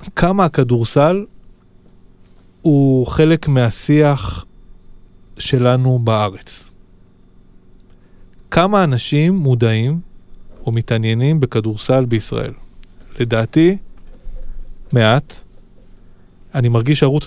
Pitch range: 115-150 Hz